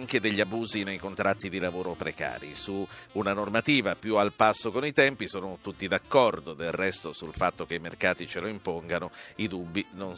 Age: 50-69